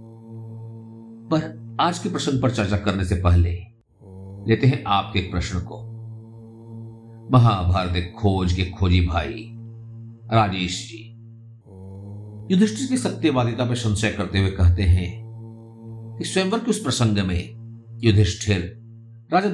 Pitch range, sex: 100-115 Hz, male